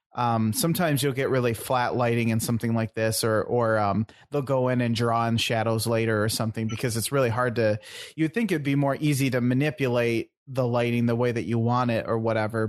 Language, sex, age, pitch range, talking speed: English, male, 30-49, 115-135 Hz, 220 wpm